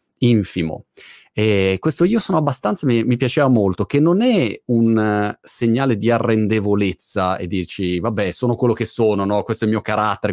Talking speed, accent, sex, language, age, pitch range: 180 wpm, native, male, Italian, 30-49, 100-155 Hz